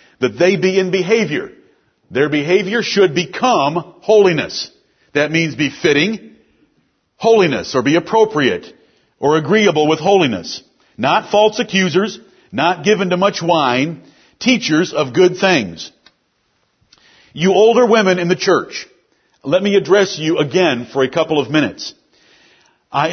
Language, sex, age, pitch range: English, male, 50-69, 150-190 Hz